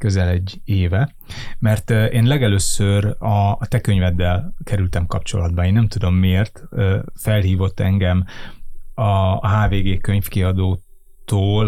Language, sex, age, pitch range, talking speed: Hungarian, male, 30-49, 95-110 Hz, 105 wpm